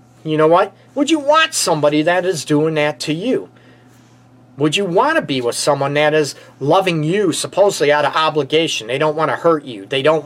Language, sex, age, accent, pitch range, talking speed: English, male, 40-59, American, 140-170 Hz, 210 wpm